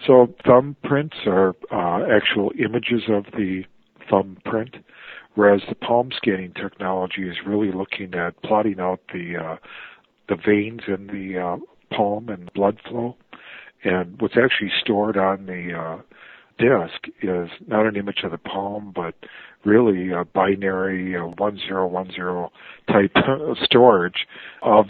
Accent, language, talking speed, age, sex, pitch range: American, English, 140 wpm, 50-69, male, 90-105 Hz